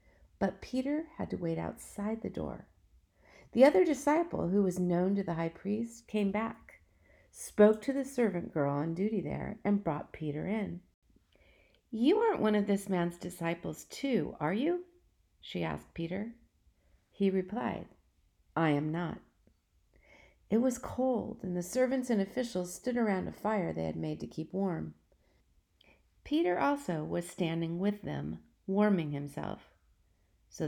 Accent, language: American, English